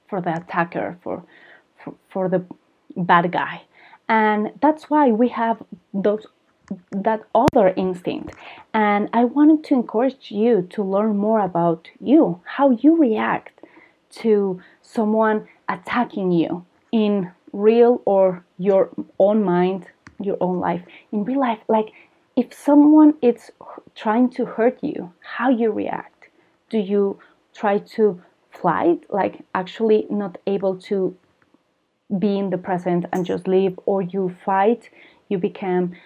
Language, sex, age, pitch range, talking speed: English, female, 30-49, 185-225 Hz, 135 wpm